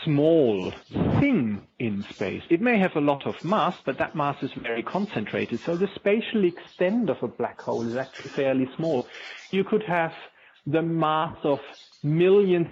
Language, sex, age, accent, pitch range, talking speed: English, male, 40-59, German, 125-170 Hz, 170 wpm